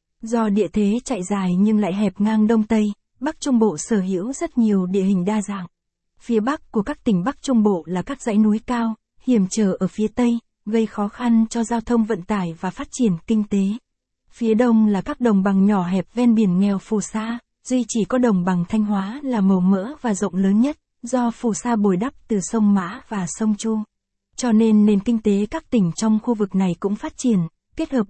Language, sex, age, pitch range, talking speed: Vietnamese, female, 20-39, 200-235 Hz, 230 wpm